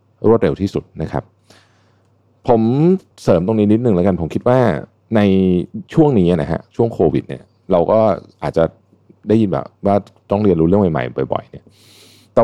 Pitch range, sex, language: 85-110 Hz, male, Thai